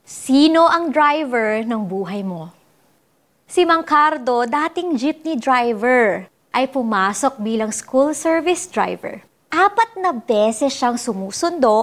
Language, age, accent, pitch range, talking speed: Filipino, 30-49, native, 225-305 Hz, 110 wpm